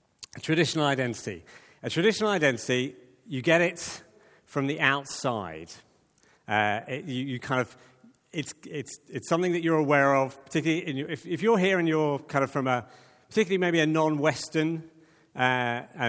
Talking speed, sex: 160 wpm, male